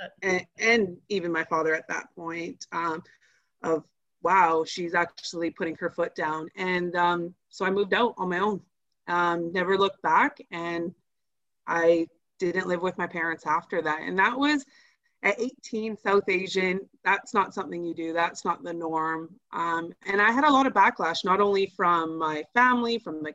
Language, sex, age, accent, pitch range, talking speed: English, female, 30-49, American, 170-220 Hz, 180 wpm